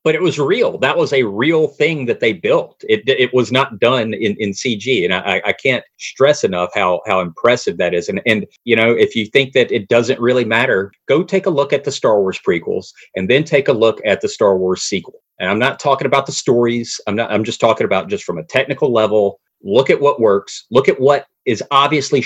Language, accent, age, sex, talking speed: English, American, 30-49, male, 240 wpm